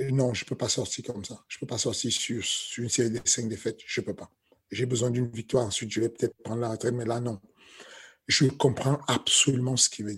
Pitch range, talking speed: 115-130 Hz, 260 wpm